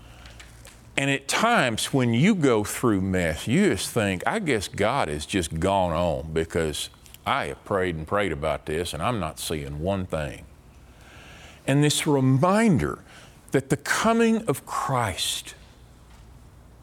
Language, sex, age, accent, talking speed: English, male, 50-69, American, 145 wpm